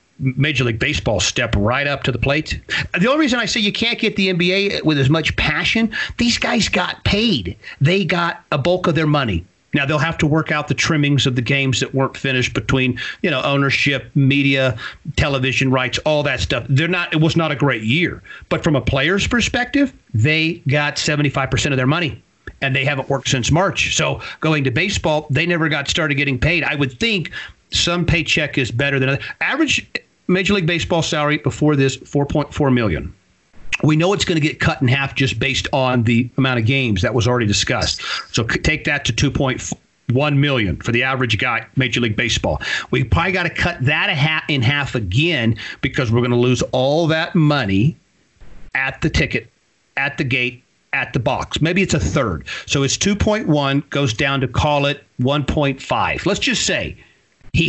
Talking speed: 205 wpm